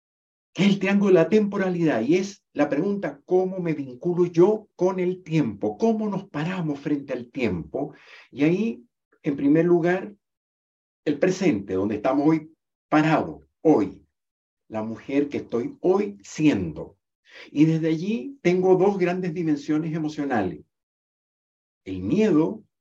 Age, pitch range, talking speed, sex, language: 50-69, 115-180 Hz, 135 wpm, male, Spanish